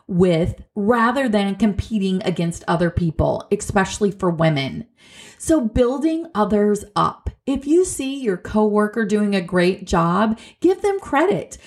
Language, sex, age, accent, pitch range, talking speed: English, female, 30-49, American, 175-245 Hz, 135 wpm